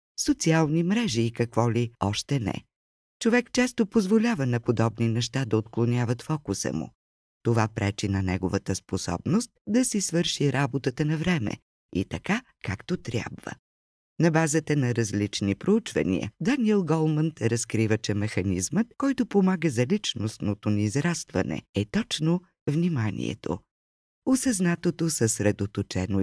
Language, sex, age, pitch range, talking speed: Bulgarian, female, 50-69, 105-175 Hz, 120 wpm